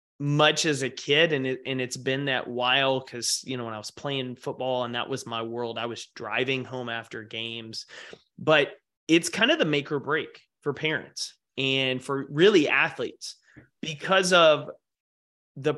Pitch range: 120-155 Hz